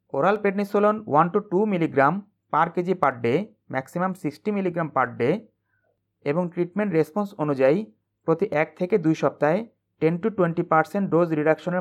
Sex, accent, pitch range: male, native, 145-195 Hz